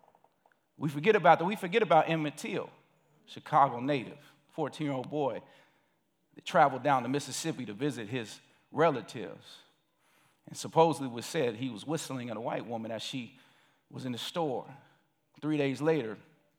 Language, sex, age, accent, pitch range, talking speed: English, male, 50-69, American, 130-185 Hz, 155 wpm